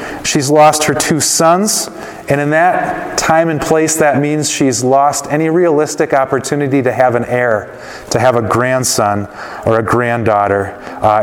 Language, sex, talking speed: English, male, 160 wpm